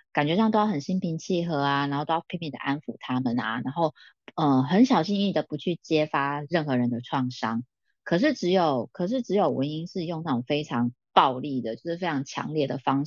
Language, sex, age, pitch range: Chinese, female, 20-39, 135-185 Hz